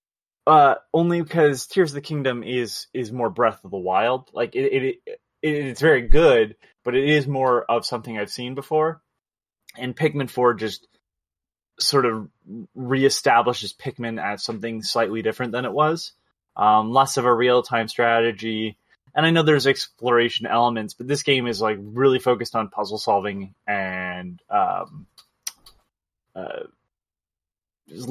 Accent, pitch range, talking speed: American, 110-135 Hz, 155 wpm